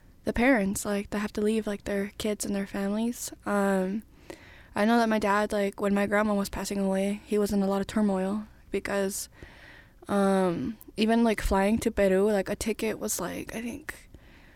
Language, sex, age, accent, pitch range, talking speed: English, female, 10-29, American, 195-215 Hz, 195 wpm